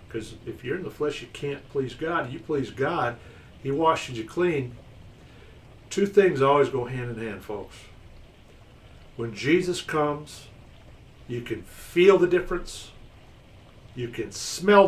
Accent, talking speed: American, 145 wpm